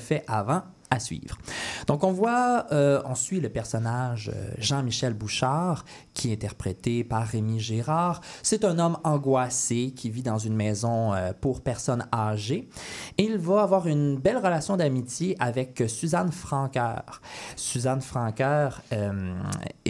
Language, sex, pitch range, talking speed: French, male, 115-170 Hz, 140 wpm